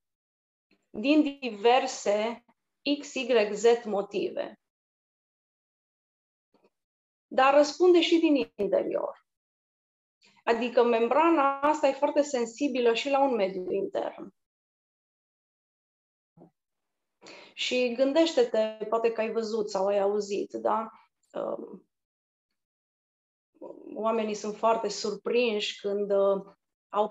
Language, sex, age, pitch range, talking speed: Romanian, female, 30-49, 205-270 Hz, 80 wpm